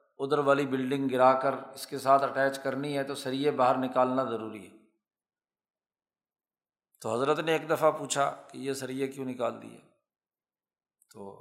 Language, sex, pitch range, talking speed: Urdu, male, 130-155 Hz, 160 wpm